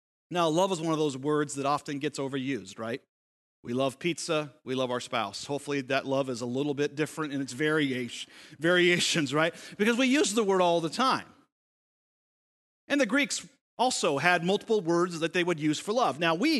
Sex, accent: male, American